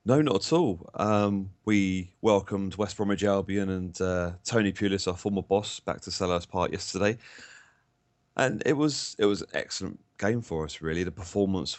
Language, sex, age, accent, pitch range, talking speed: English, male, 30-49, British, 85-100 Hz, 180 wpm